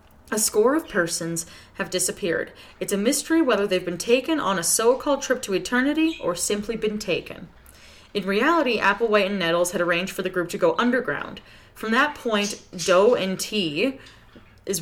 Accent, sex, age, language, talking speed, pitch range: American, female, 20-39, English, 175 wpm, 175-210 Hz